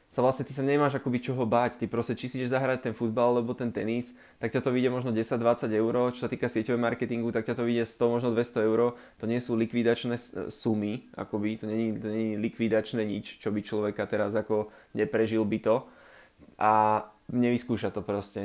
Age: 20-39